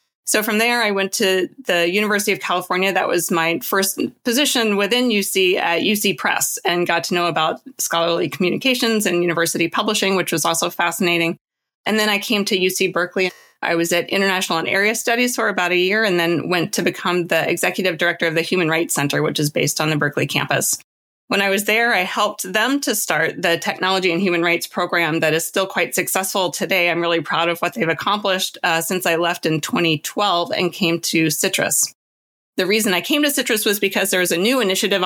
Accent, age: American, 30-49